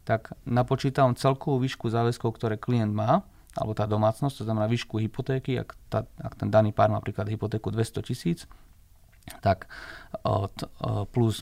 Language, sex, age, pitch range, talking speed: Slovak, male, 30-49, 105-125 Hz, 145 wpm